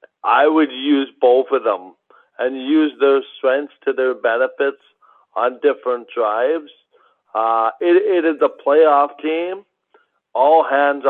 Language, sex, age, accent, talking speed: English, male, 50-69, American, 135 wpm